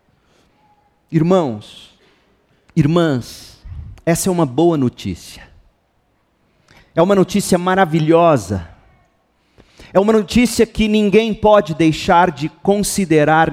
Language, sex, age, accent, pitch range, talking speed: Portuguese, male, 40-59, Brazilian, 130-185 Hz, 90 wpm